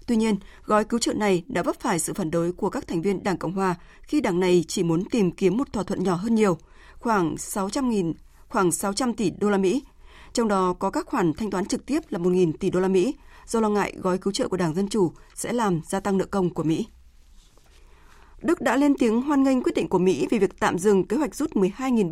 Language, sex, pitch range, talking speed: Vietnamese, female, 185-240 Hz, 250 wpm